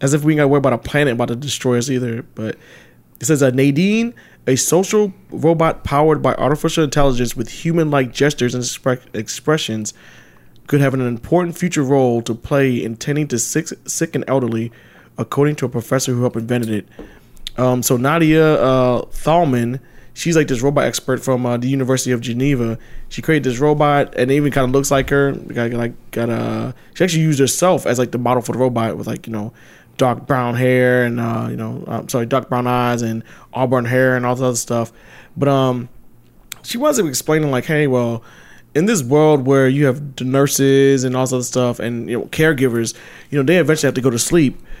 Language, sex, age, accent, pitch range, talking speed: English, male, 20-39, American, 120-145 Hz, 210 wpm